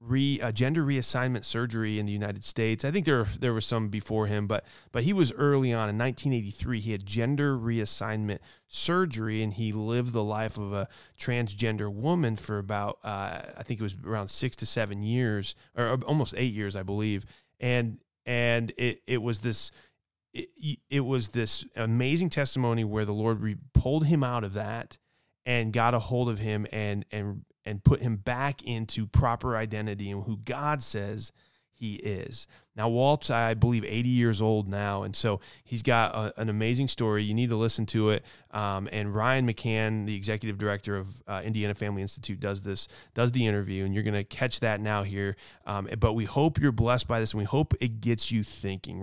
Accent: American